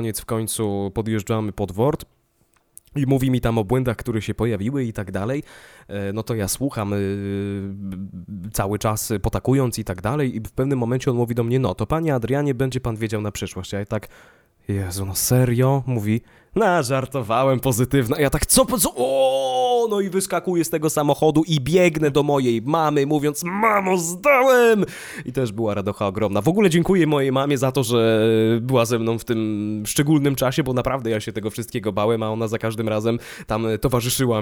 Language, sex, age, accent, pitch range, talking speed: Polish, male, 20-39, native, 110-155 Hz, 185 wpm